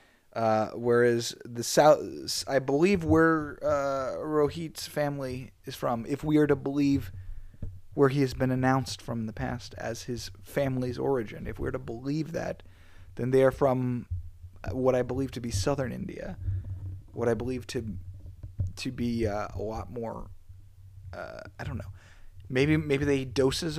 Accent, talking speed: American, 165 wpm